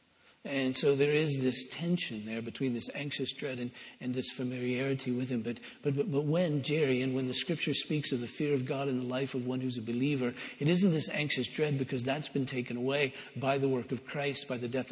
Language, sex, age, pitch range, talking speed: English, male, 50-69, 130-155 Hz, 235 wpm